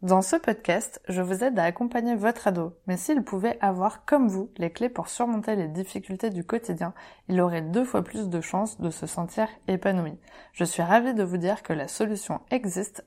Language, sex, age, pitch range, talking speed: French, female, 20-39, 175-215 Hz, 205 wpm